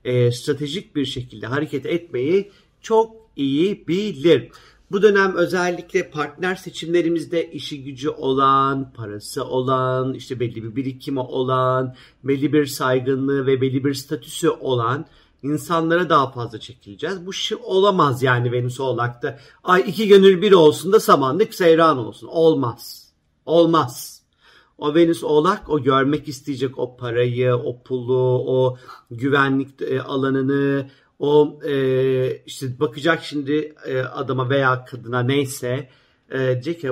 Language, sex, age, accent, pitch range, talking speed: Turkish, male, 50-69, native, 130-170 Hz, 125 wpm